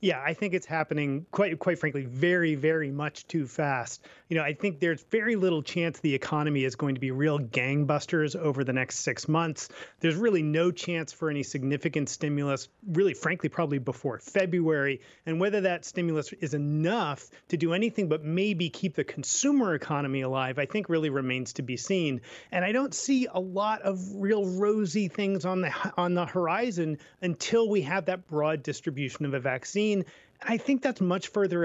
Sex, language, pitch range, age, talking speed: male, English, 145-185 Hz, 30-49, 190 wpm